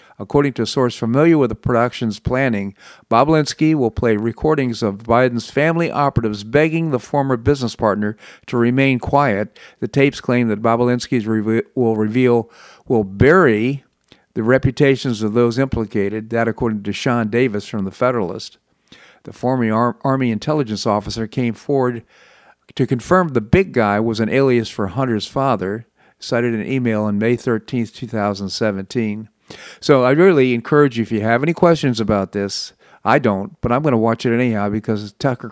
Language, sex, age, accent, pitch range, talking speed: English, male, 50-69, American, 105-130 Hz, 165 wpm